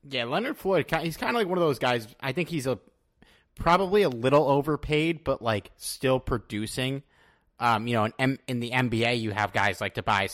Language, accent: English, American